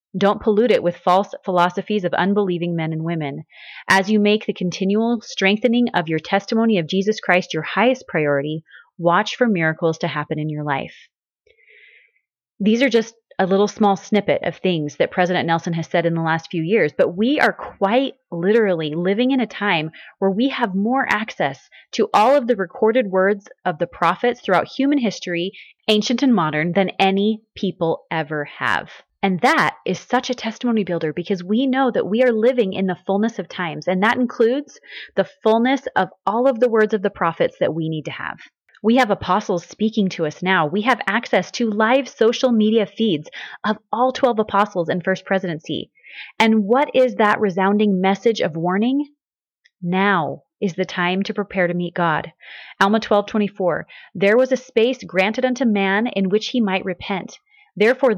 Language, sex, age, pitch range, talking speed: English, female, 30-49, 180-230 Hz, 185 wpm